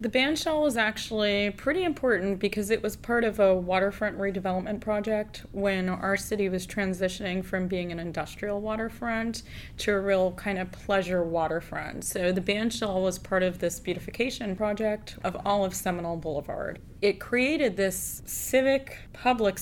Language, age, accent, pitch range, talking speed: English, 20-39, American, 180-205 Hz, 160 wpm